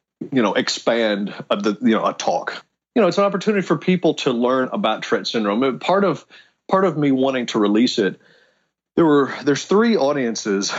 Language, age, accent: English, 40-59, American